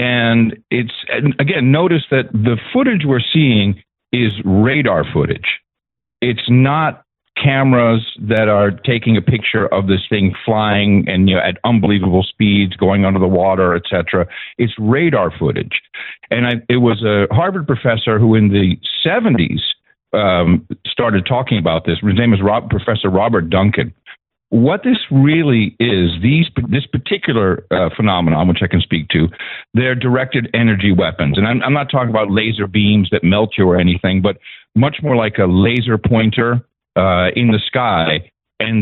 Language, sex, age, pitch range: English, male, 50-69, 95-120 Hz